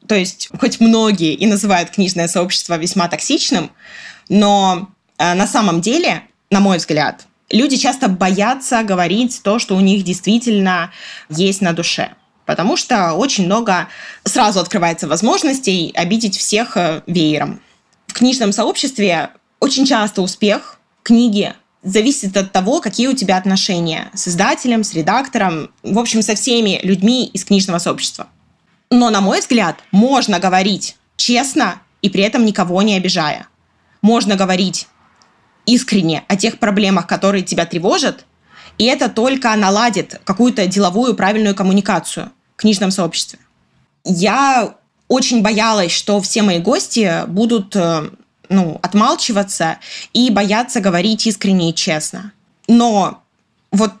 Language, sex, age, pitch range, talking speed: Russian, female, 20-39, 185-230 Hz, 130 wpm